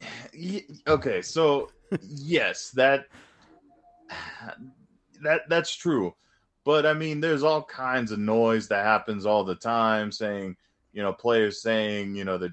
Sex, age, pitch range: male, 20-39, 100-130 Hz